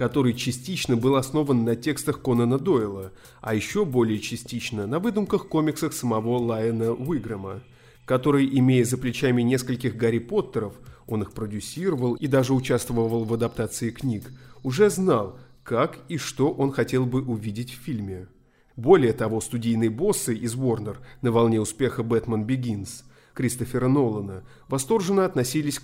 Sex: male